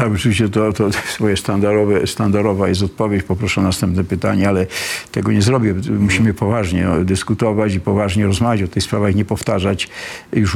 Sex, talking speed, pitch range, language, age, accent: male, 165 wpm, 100-130 Hz, Polish, 50-69, native